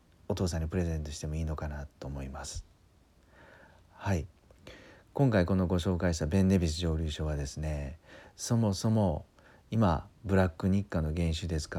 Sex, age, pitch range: male, 40-59, 80-95 Hz